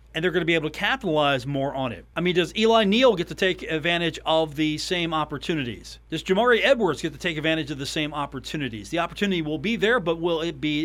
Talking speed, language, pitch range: 245 wpm, English, 140-185 Hz